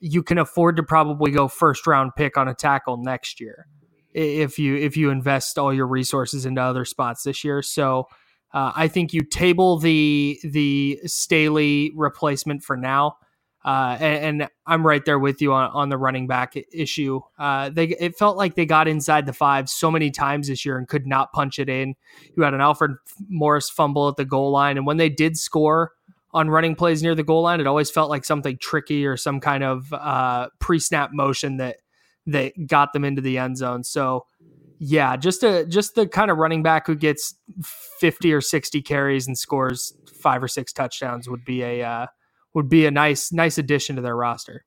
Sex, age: male, 20-39